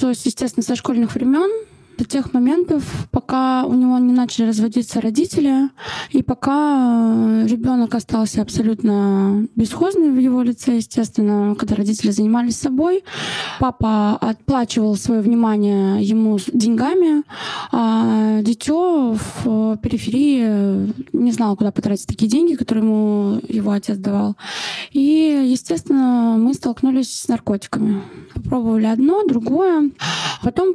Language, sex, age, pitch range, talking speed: Russian, female, 20-39, 220-290 Hz, 115 wpm